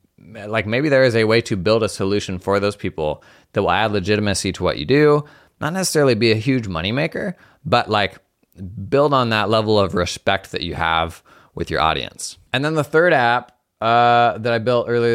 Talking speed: 200 wpm